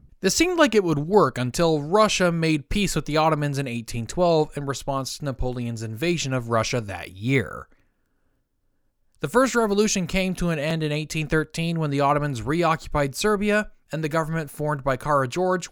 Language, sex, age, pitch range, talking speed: English, male, 20-39, 135-180 Hz, 170 wpm